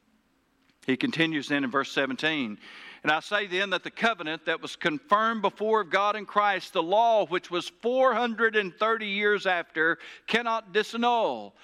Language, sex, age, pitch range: English, male, 60-79, 150-205 Hz